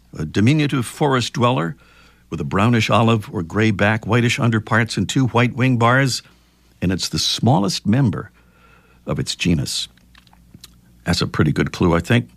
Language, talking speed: English, 160 wpm